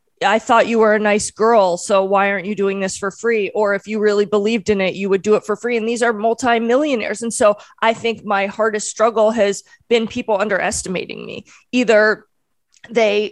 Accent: American